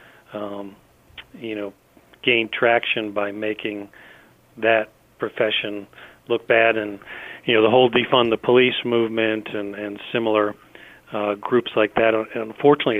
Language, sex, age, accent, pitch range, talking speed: English, male, 40-59, American, 105-115 Hz, 130 wpm